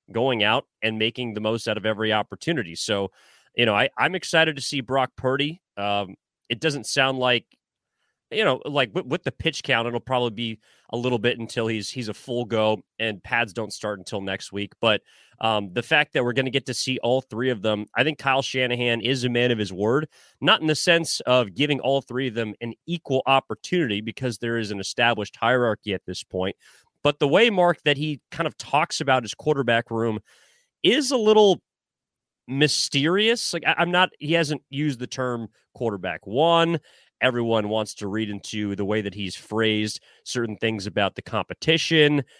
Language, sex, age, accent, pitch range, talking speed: English, male, 30-49, American, 110-145 Hz, 200 wpm